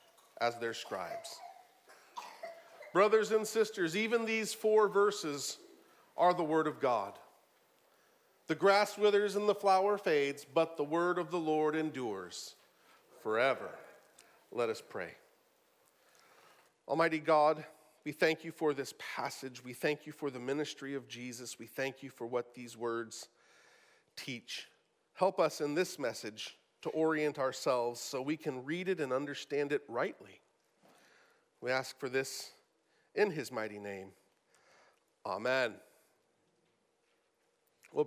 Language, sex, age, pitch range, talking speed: English, male, 40-59, 145-205 Hz, 130 wpm